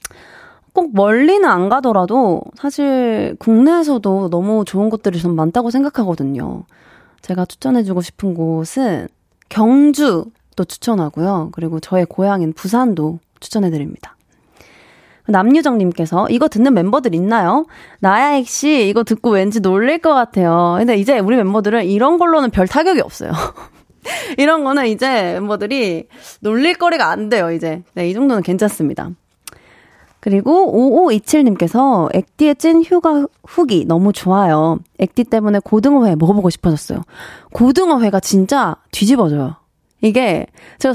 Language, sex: Korean, female